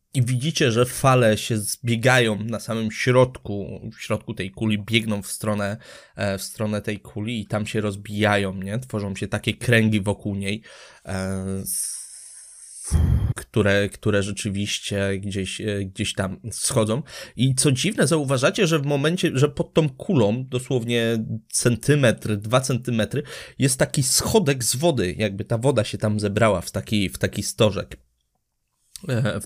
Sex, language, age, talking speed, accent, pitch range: male, Polish, 20-39, 145 wpm, native, 105-130 Hz